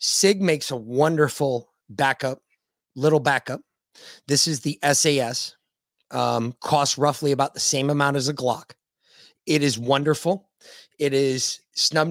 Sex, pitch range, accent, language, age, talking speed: male, 125-155 Hz, American, English, 30-49, 135 wpm